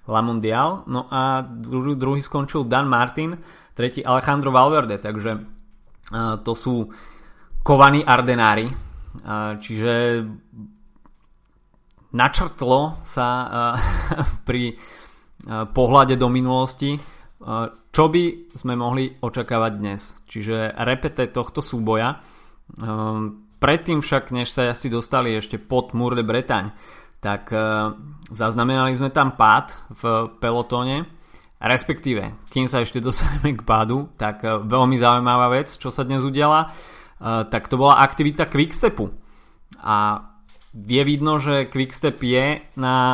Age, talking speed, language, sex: 30-49, 110 wpm, Slovak, male